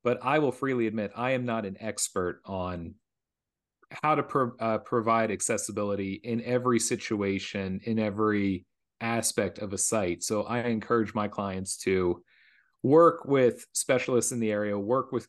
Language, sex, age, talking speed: English, male, 40-59, 155 wpm